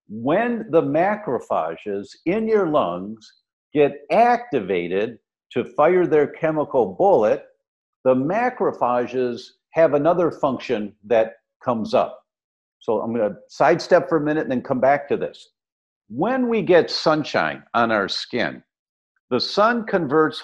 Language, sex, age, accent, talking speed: English, male, 50-69, American, 130 wpm